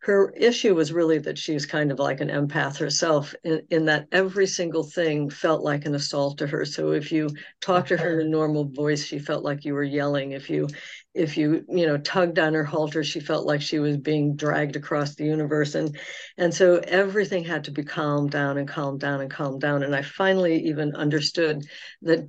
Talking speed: 220 wpm